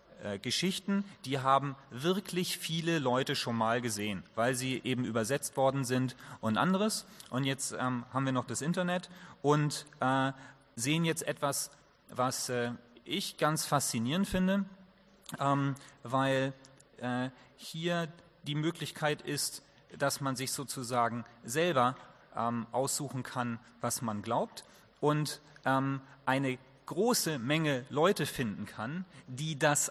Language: English